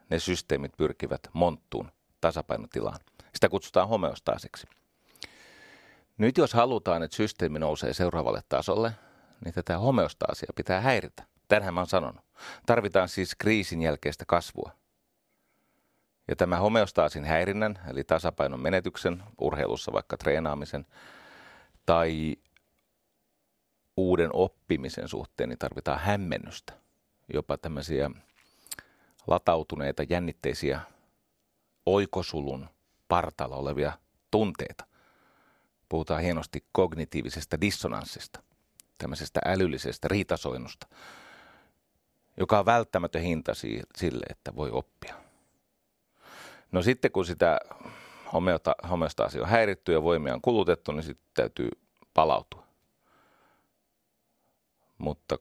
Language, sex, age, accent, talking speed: Finnish, male, 40-59, native, 95 wpm